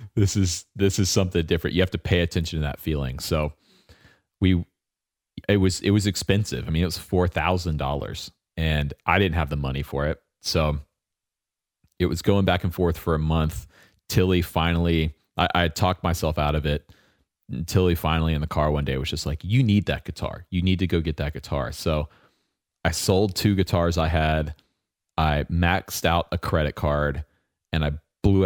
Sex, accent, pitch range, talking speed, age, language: male, American, 75-95 Hz, 190 wpm, 30-49, English